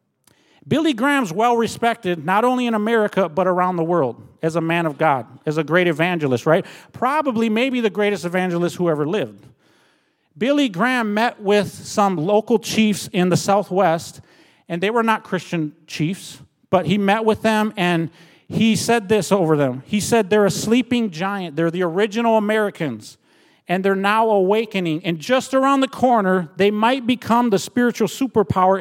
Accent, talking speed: American, 170 wpm